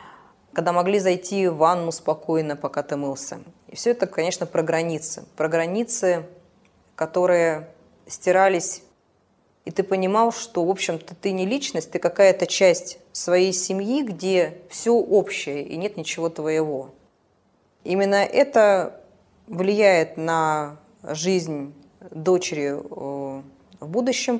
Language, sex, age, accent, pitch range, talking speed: Russian, female, 20-39, native, 155-195 Hz, 120 wpm